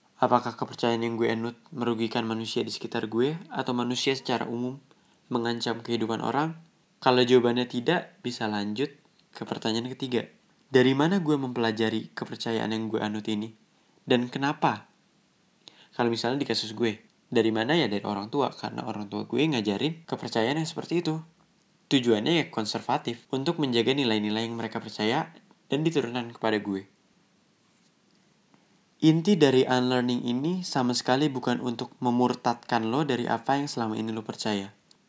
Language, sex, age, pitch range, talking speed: Indonesian, male, 20-39, 115-150 Hz, 145 wpm